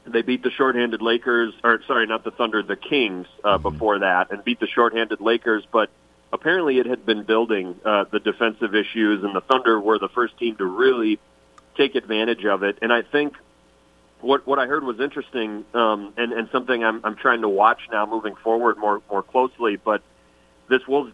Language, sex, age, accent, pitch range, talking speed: English, male, 40-59, American, 105-120 Hz, 200 wpm